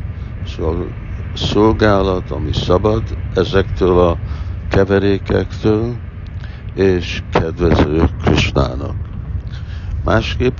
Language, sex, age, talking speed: Hungarian, male, 60-79, 55 wpm